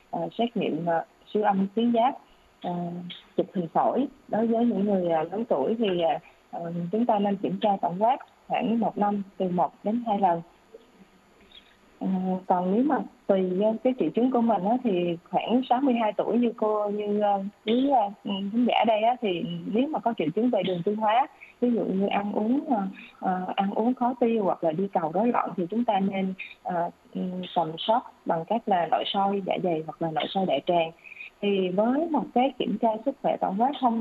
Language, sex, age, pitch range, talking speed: Vietnamese, female, 20-39, 185-235 Hz, 195 wpm